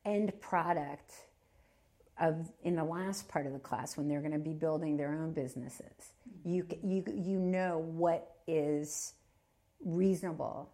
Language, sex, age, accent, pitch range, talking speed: English, female, 50-69, American, 150-180 Hz, 145 wpm